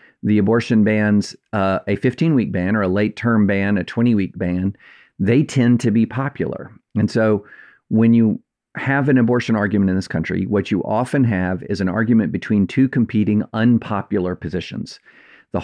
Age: 50-69